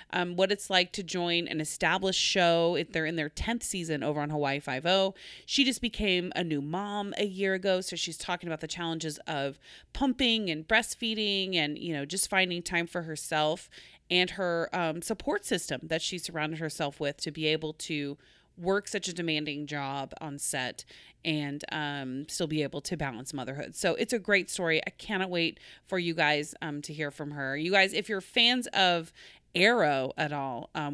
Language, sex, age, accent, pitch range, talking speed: English, female, 30-49, American, 150-200 Hz, 200 wpm